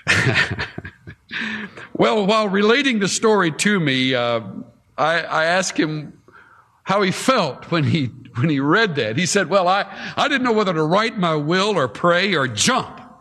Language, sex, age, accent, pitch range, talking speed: English, male, 60-79, American, 120-190 Hz, 165 wpm